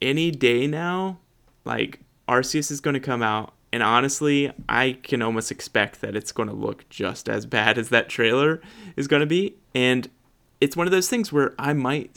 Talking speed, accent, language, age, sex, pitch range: 195 wpm, American, English, 20-39, male, 110-135 Hz